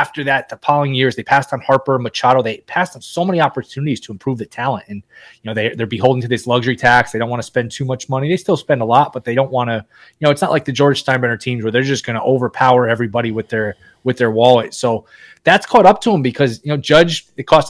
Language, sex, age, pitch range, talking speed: English, male, 20-39, 125-155 Hz, 270 wpm